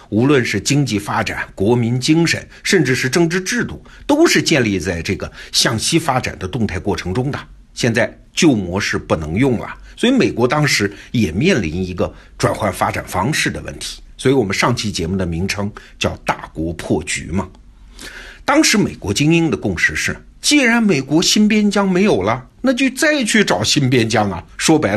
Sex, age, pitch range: male, 50-69, 95-150 Hz